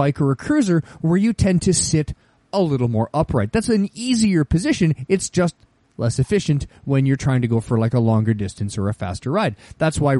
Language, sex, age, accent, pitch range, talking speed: English, male, 30-49, American, 130-220 Hz, 220 wpm